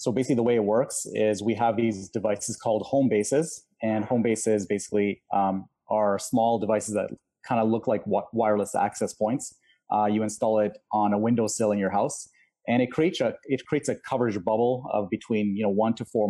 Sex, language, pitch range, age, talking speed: male, English, 105-120 Hz, 30-49, 205 wpm